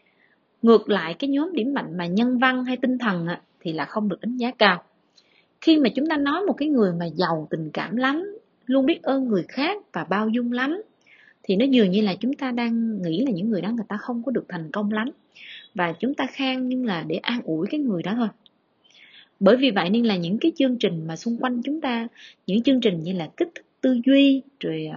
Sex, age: female, 20-39